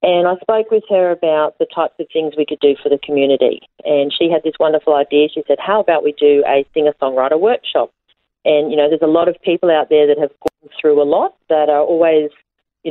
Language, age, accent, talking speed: English, 40-59, Australian, 235 wpm